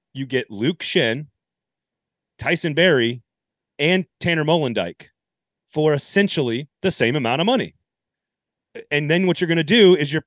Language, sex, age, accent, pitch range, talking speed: English, male, 30-49, American, 105-150 Hz, 145 wpm